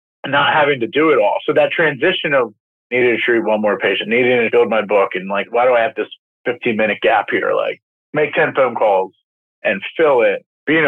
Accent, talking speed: American, 230 wpm